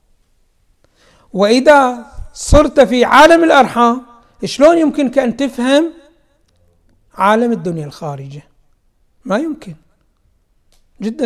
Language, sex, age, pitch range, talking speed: Arabic, male, 60-79, 190-265 Hz, 80 wpm